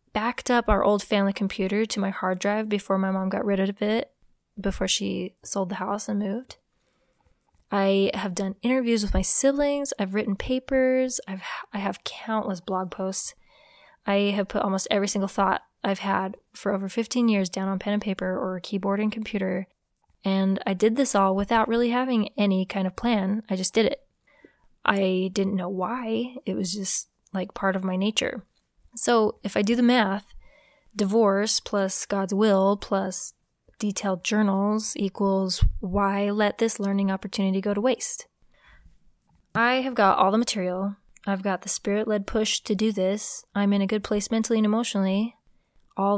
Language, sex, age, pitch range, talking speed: English, female, 20-39, 195-220 Hz, 175 wpm